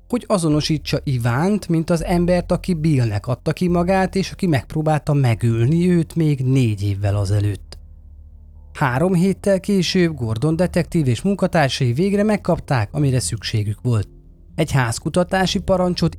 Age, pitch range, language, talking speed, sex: 30-49, 110-170 Hz, Hungarian, 130 wpm, male